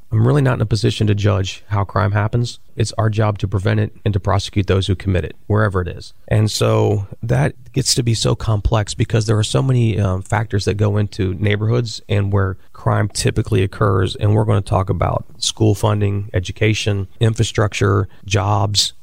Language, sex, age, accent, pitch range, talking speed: English, male, 30-49, American, 95-115 Hz, 195 wpm